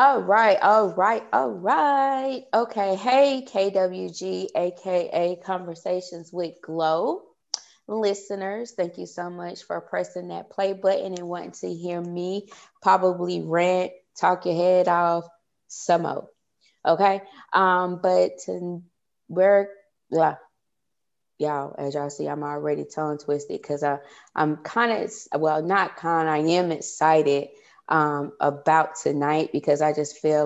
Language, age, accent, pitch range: English, 20-39, American, 150-180 Hz